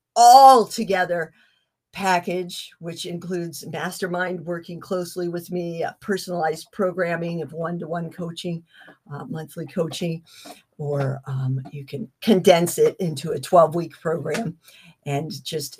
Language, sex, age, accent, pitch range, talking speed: English, female, 50-69, American, 155-220 Hz, 120 wpm